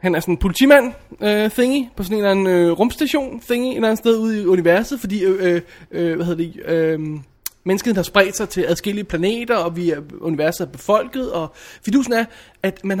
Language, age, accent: Danish, 20-39, native